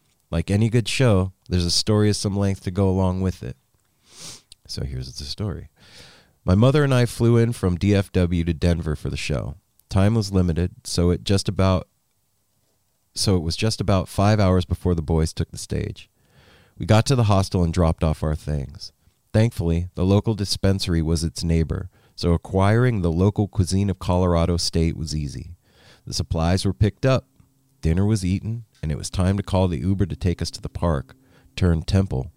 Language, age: English, 30-49